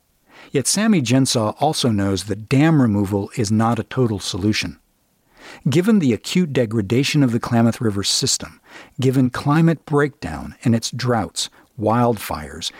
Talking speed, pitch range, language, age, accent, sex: 135 wpm, 110-145 Hz, English, 50-69, American, male